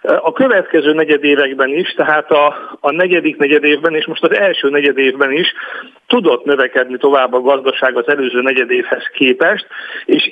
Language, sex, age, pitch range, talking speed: Hungarian, male, 50-69, 140-200 Hz, 145 wpm